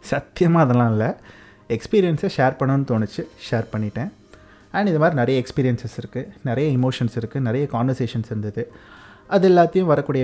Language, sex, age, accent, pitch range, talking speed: Tamil, male, 30-49, native, 115-135 Hz, 140 wpm